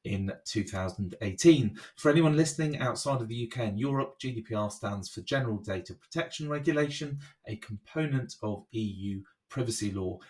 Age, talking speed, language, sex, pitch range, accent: 30-49, 140 wpm, English, male, 105-135 Hz, British